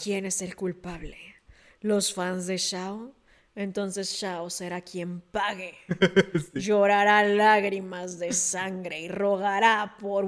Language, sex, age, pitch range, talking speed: Spanish, female, 20-39, 205-290 Hz, 115 wpm